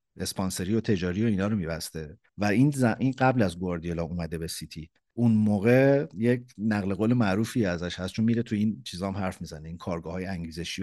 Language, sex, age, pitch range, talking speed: Persian, male, 50-69, 90-120 Hz, 190 wpm